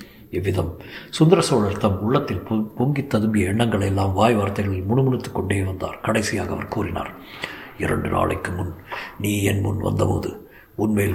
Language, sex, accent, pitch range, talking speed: Tamil, male, native, 95-110 Hz, 130 wpm